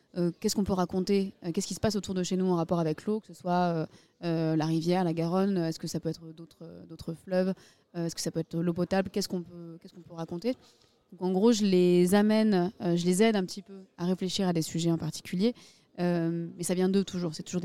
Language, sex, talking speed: French, female, 260 wpm